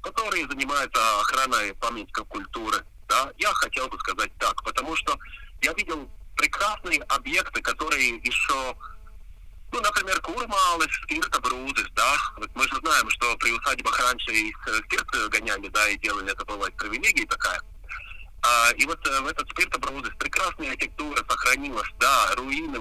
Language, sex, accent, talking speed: Russian, male, native, 135 wpm